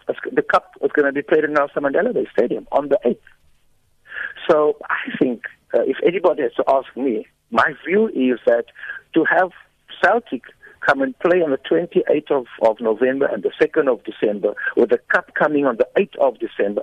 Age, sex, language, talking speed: 60-79, male, English, 195 wpm